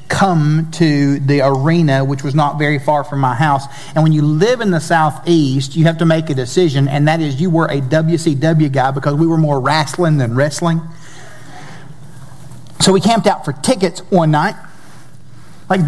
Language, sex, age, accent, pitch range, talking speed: English, male, 50-69, American, 160-215 Hz, 185 wpm